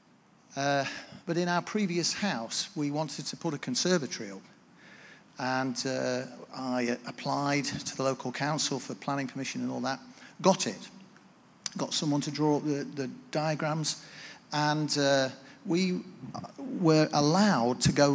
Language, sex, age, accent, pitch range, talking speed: English, male, 40-59, British, 140-180 Hz, 140 wpm